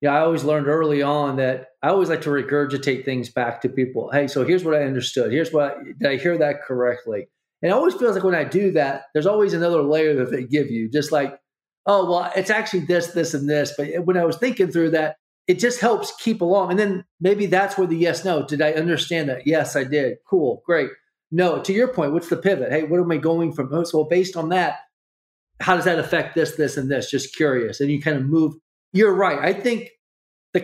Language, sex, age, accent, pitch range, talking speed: English, male, 40-59, American, 140-180 Hz, 240 wpm